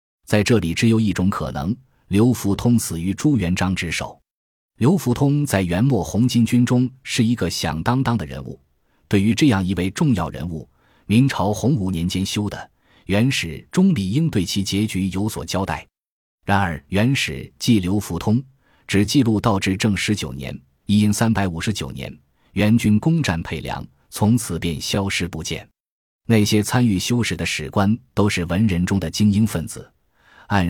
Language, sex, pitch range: Chinese, male, 90-120 Hz